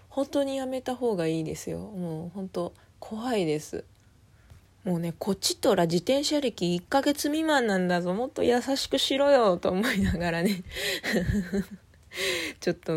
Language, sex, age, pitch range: Japanese, female, 20-39, 155-215 Hz